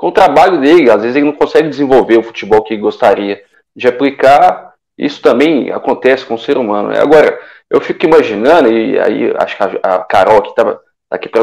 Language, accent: Portuguese, Brazilian